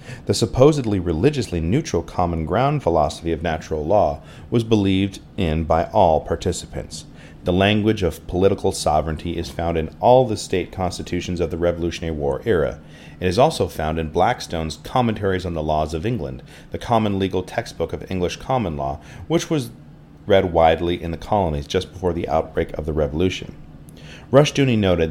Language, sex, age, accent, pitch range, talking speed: English, male, 40-59, American, 80-110 Hz, 165 wpm